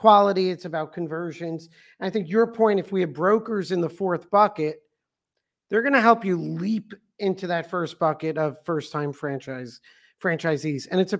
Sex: male